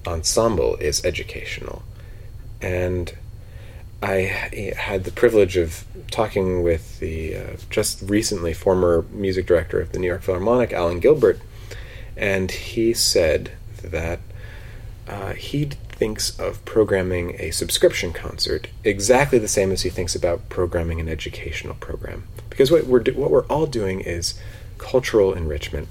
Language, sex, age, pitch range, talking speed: English, male, 30-49, 95-110 Hz, 135 wpm